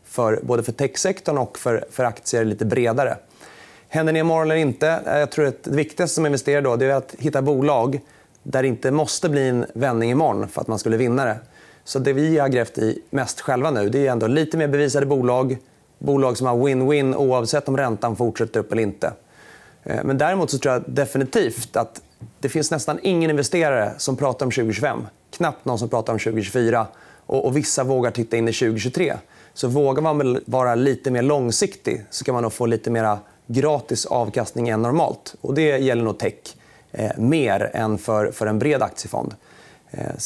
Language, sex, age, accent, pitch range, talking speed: Swedish, male, 30-49, native, 115-145 Hz, 190 wpm